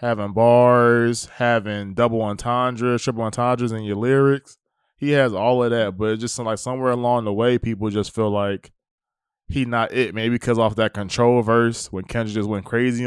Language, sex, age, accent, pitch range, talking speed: English, male, 20-39, American, 110-125 Hz, 190 wpm